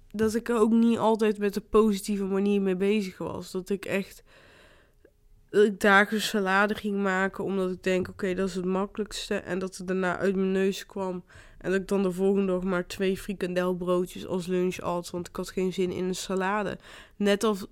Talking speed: 210 wpm